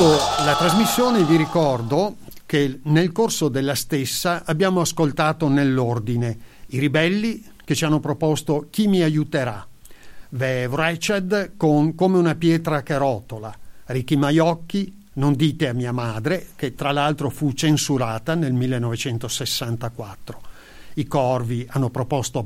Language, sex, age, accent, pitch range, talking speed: Italian, male, 50-69, native, 125-155 Hz, 120 wpm